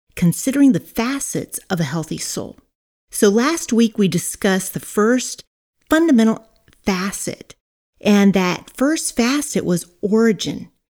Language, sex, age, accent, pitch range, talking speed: English, female, 40-59, American, 170-225 Hz, 120 wpm